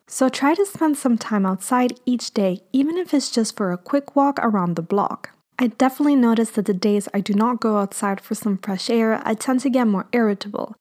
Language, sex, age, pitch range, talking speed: English, female, 20-39, 200-250 Hz, 230 wpm